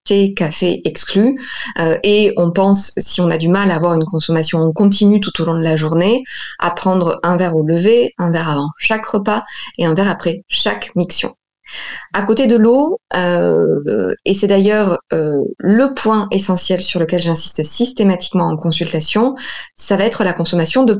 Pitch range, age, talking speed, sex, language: 170-225 Hz, 20-39, 185 wpm, female, French